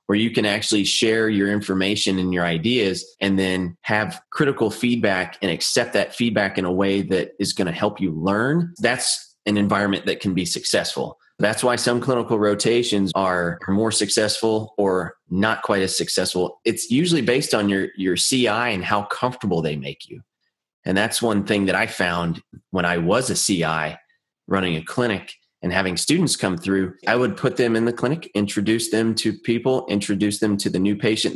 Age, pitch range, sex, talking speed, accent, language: 30-49, 100-125 Hz, male, 190 wpm, American, English